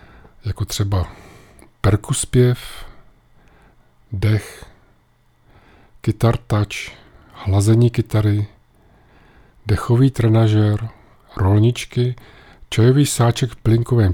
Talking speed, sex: 60 wpm, male